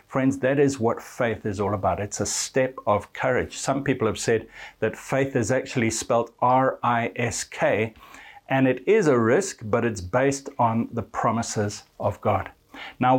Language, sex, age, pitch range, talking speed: English, male, 60-79, 110-130 Hz, 170 wpm